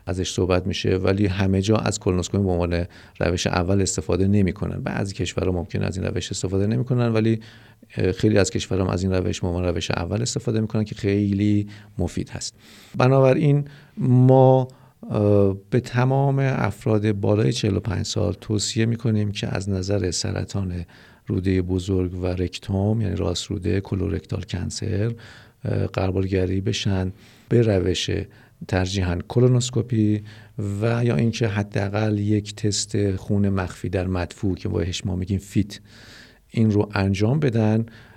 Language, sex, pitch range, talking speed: Persian, male, 95-115 Hz, 135 wpm